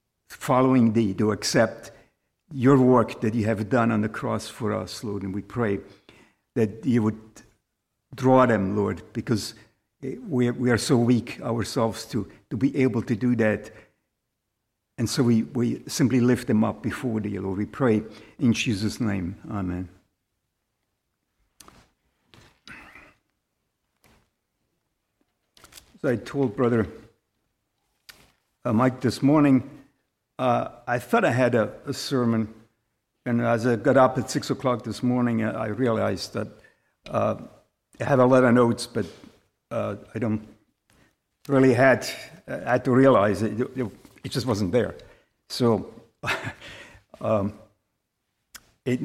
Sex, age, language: male, 60-79, English